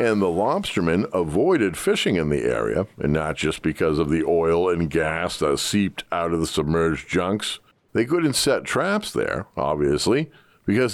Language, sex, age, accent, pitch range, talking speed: English, male, 50-69, American, 85-125 Hz, 170 wpm